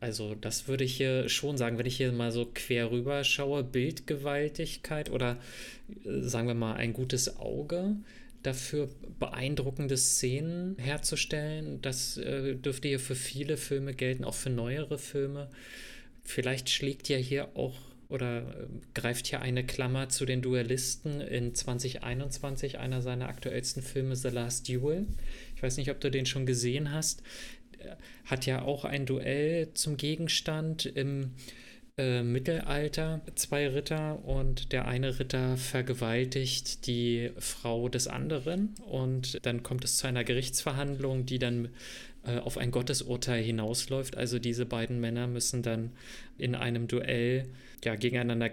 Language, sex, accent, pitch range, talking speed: German, male, German, 125-140 Hz, 140 wpm